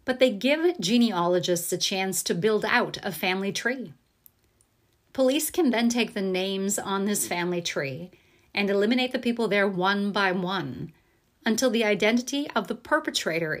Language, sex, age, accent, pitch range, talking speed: English, female, 30-49, American, 185-225 Hz, 160 wpm